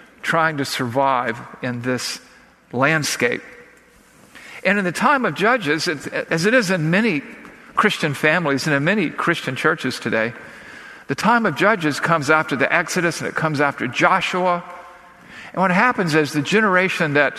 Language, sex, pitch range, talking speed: English, male, 130-175 Hz, 155 wpm